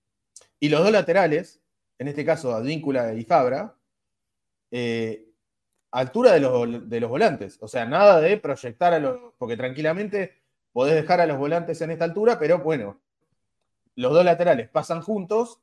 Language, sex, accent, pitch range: Spanish, male, Argentinian, 125-205 Hz